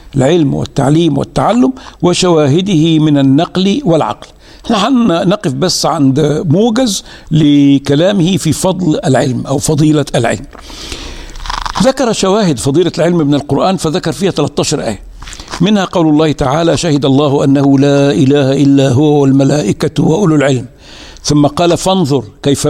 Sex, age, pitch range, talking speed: male, 60-79, 140-175 Hz, 125 wpm